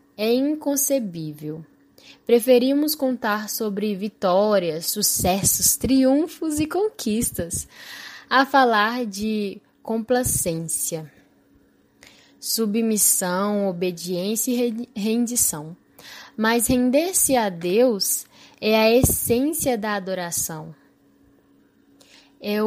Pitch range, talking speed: 190-245 Hz, 75 wpm